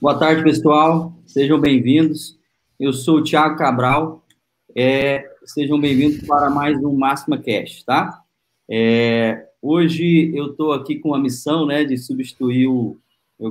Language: Portuguese